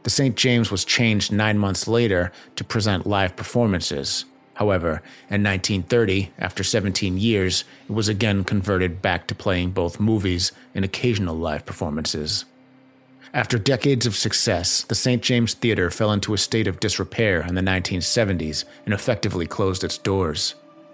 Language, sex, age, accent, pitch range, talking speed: English, male, 30-49, American, 95-115 Hz, 150 wpm